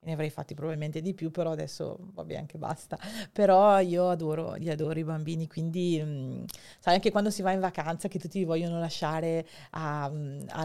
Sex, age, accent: female, 40-59, native